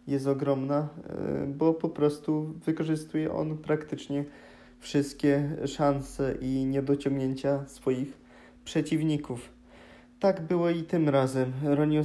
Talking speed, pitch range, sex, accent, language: 100 wpm, 135-150 Hz, male, native, Polish